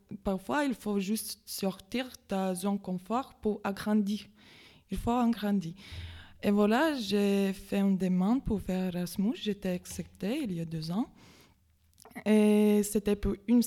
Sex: female